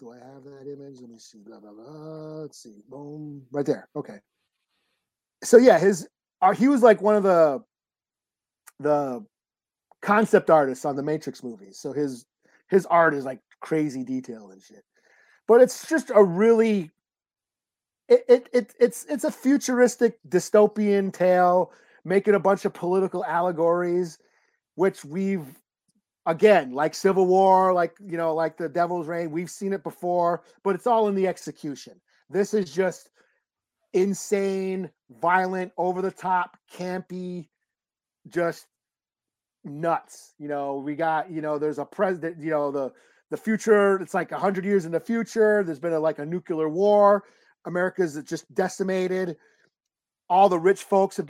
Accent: American